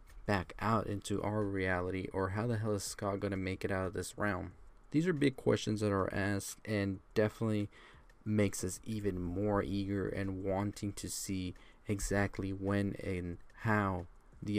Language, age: English, 20-39